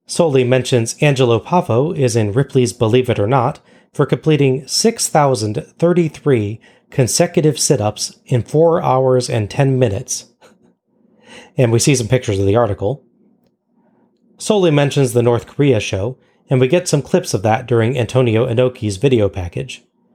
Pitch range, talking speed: 110-150 Hz, 145 wpm